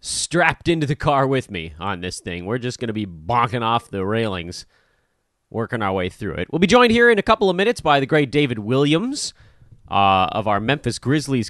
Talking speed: 220 wpm